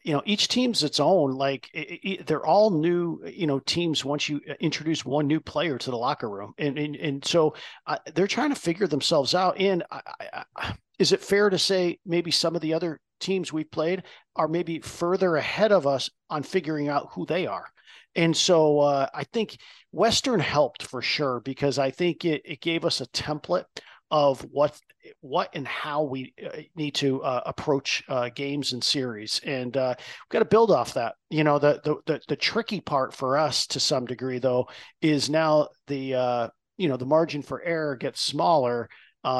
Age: 50-69